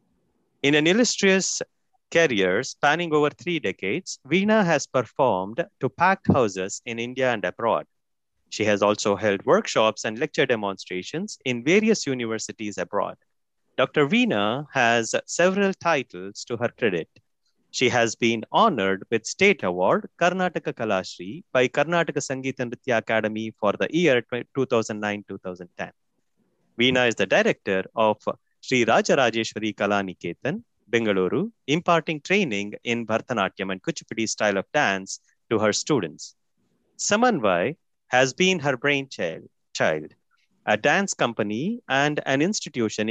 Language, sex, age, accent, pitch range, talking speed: French, male, 30-49, Indian, 110-160 Hz, 130 wpm